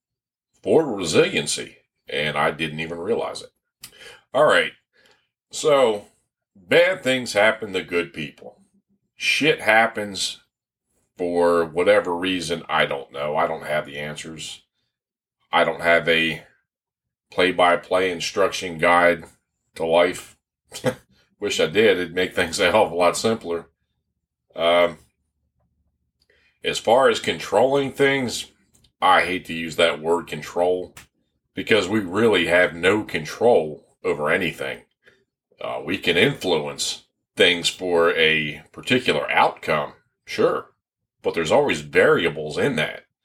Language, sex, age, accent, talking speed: English, male, 40-59, American, 120 wpm